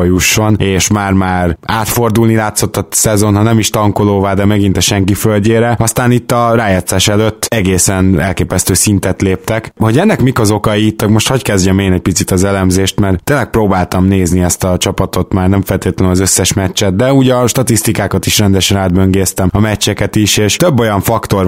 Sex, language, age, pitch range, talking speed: male, Hungarian, 20-39, 95-110 Hz, 185 wpm